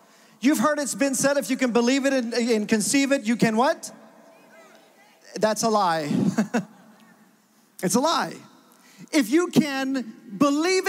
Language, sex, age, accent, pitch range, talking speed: English, male, 40-59, American, 225-275 Hz, 145 wpm